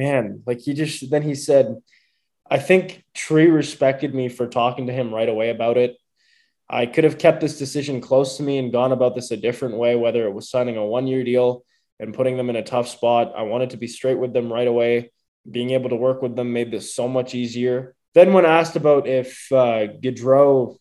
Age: 20-39